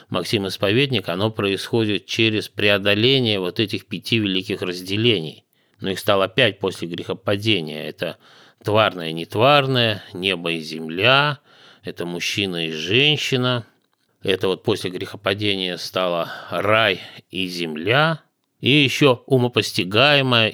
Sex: male